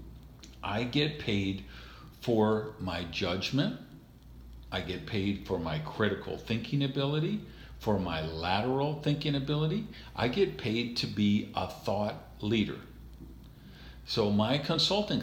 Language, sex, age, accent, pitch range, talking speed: English, male, 50-69, American, 95-115 Hz, 120 wpm